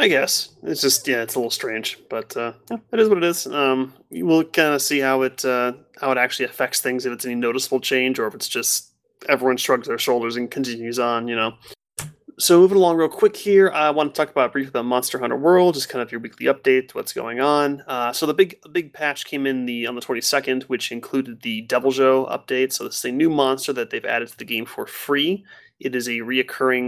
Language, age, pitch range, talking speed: English, 30-49, 125-160 Hz, 250 wpm